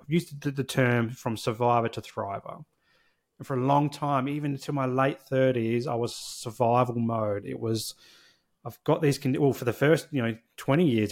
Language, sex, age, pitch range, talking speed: English, male, 30-49, 115-140 Hz, 195 wpm